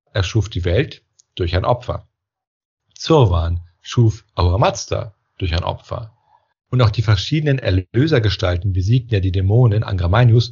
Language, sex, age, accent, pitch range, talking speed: German, male, 40-59, German, 100-125 Hz, 130 wpm